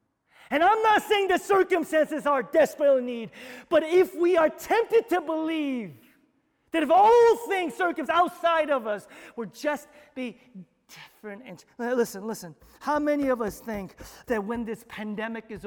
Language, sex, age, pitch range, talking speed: English, male, 40-59, 215-315 Hz, 165 wpm